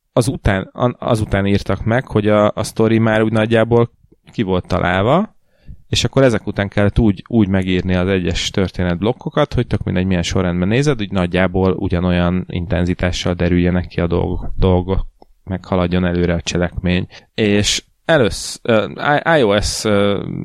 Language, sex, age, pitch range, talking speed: Hungarian, male, 30-49, 90-110 Hz, 145 wpm